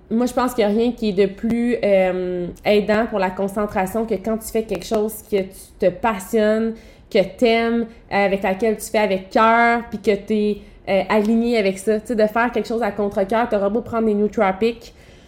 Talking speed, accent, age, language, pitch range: 225 wpm, Canadian, 20-39, French, 200-250 Hz